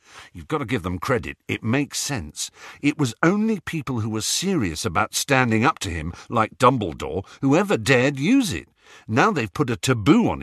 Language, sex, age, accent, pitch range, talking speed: English, male, 50-69, British, 90-135 Hz, 195 wpm